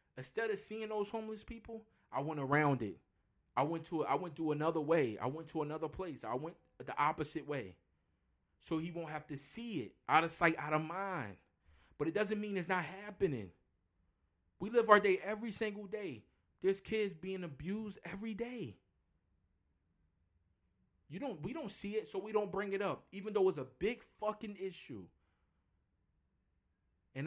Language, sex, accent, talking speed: English, male, American, 180 wpm